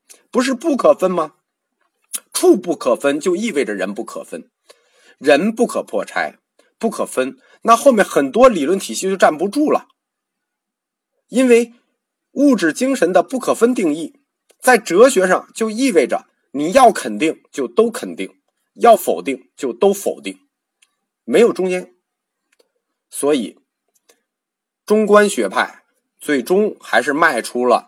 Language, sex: Chinese, male